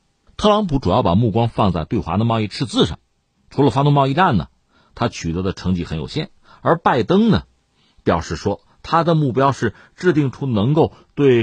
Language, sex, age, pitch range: Chinese, male, 50-69, 95-145 Hz